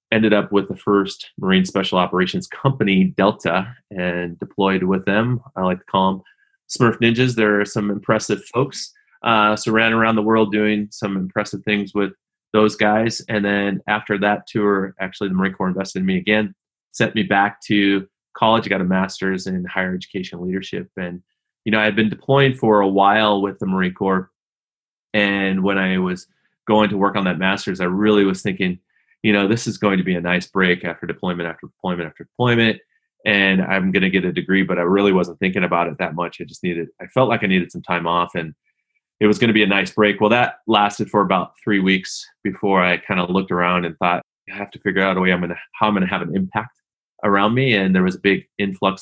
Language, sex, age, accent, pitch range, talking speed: English, male, 30-49, American, 95-105 Hz, 225 wpm